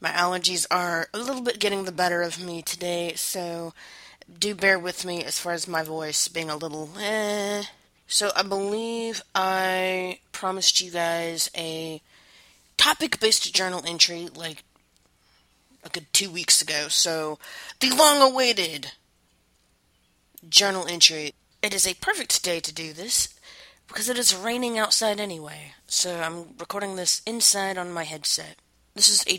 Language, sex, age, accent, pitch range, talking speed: English, female, 20-39, American, 170-205 Hz, 150 wpm